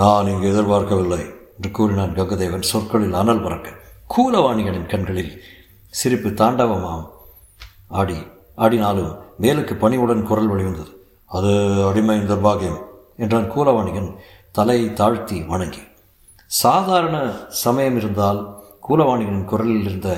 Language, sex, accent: Tamil, male, native